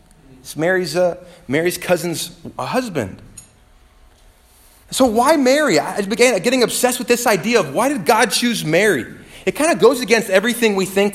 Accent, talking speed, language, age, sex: American, 160 wpm, English, 30-49, male